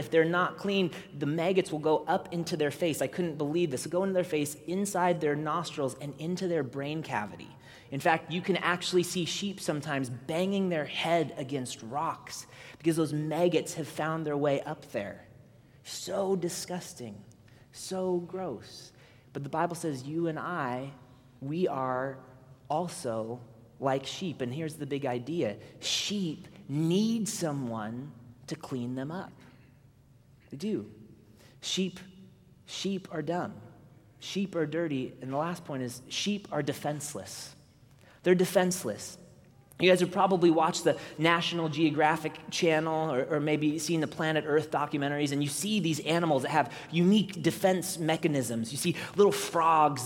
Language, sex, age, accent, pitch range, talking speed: English, male, 30-49, American, 135-175 Hz, 155 wpm